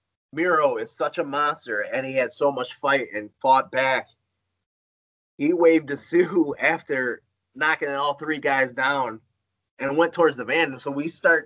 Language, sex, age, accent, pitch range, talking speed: English, male, 30-49, American, 105-165 Hz, 170 wpm